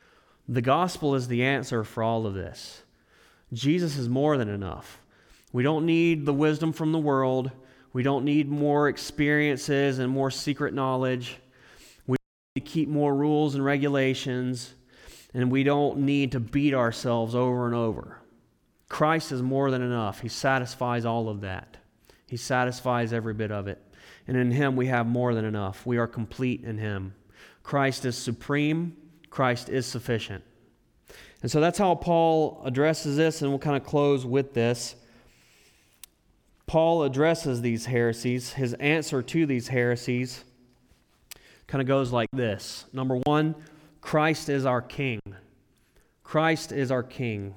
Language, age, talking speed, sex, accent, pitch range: English, 30-49, 155 wpm, male, American, 120-145 Hz